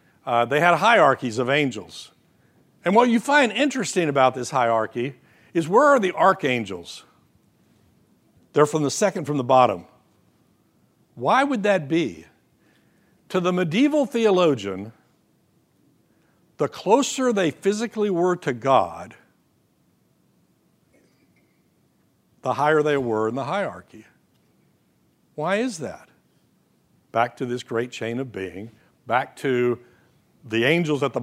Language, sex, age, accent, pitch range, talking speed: English, male, 60-79, American, 120-165 Hz, 125 wpm